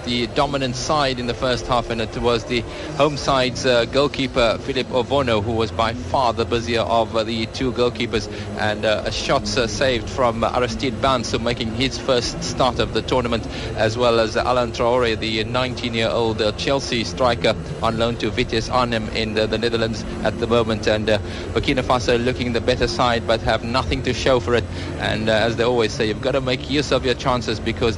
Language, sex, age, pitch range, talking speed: English, male, 50-69, 110-120 Hz, 210 wpm